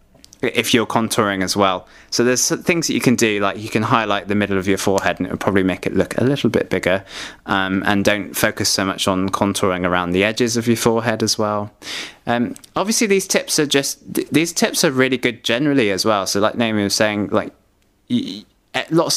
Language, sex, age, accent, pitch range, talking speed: English, male, 20-39, British, 100-130 Hz, 215 wpm